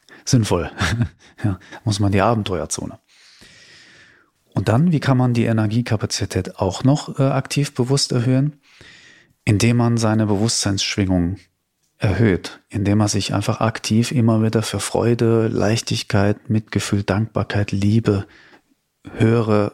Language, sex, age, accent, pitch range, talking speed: German, male, 40-59, German, 100-125 Hz, 110 wpm